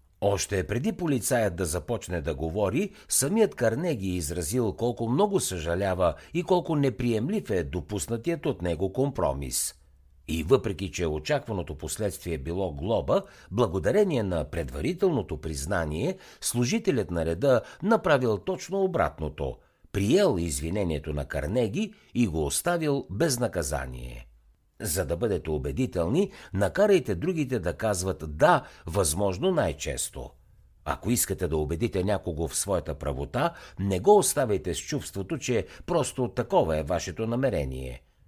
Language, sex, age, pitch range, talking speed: Bulgarian, male, 60-79, 80-130 Hz, 120 wpm